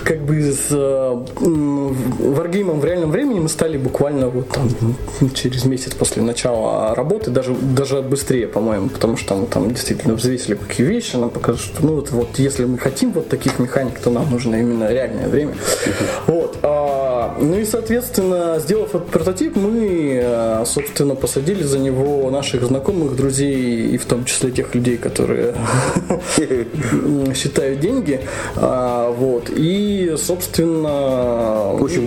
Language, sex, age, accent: Russian, male, 20-39, native